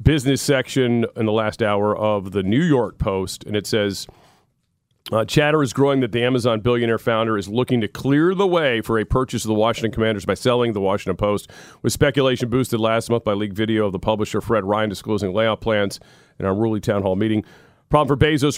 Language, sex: English, male